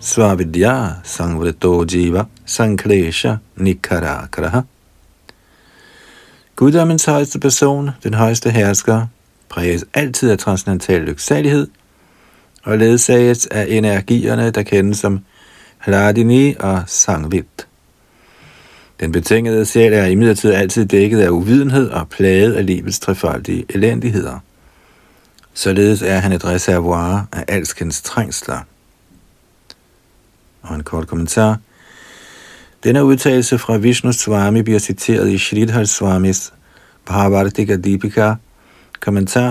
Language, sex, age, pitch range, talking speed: Danish, male, 60-79, 90-115 Hz, 100 wpm